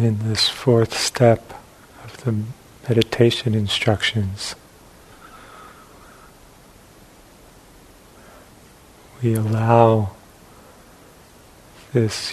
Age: 40-59